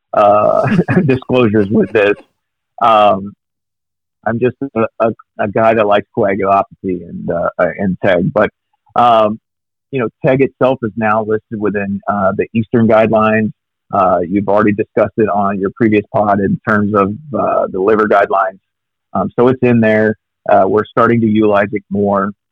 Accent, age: American, 50-69